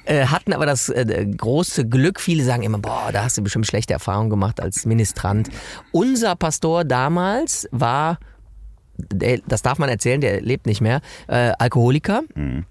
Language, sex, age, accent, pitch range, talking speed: German, male, 30-49, German, 115-160 Hz, 145 wpm